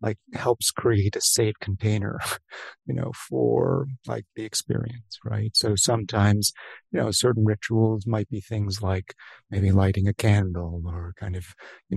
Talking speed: 155 wpm